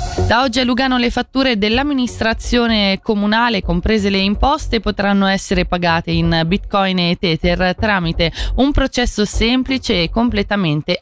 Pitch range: 170-230 Hz